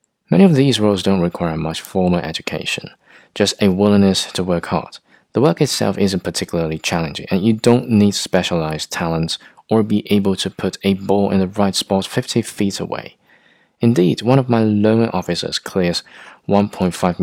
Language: Chinese